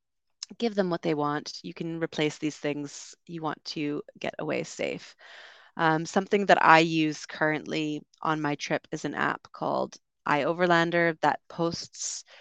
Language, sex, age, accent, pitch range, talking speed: English, female, 30-49, American, 155-175 Hz, 155 wpm